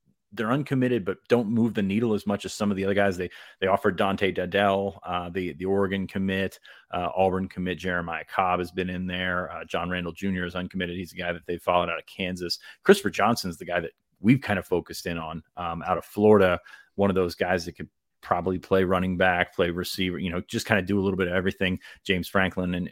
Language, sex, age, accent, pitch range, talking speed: English, male, 30-49, American, 90-105 Hz, 235 wpm